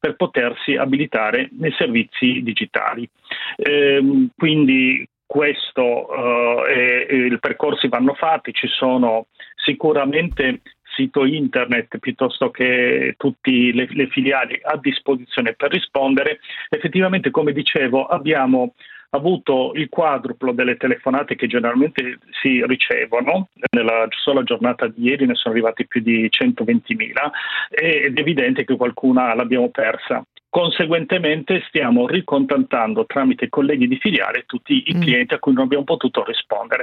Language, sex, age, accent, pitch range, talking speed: Italian, male, 40-59, native, 125-185 Hz, 130 wpm